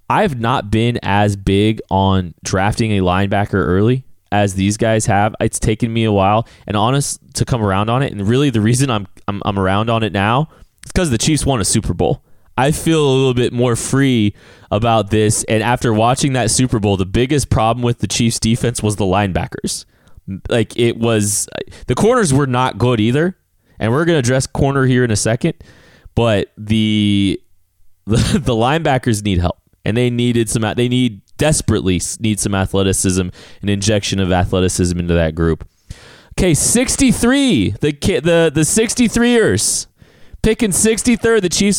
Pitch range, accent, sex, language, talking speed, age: 95-130 Hz, American, male, English, 180 wpm, 20-39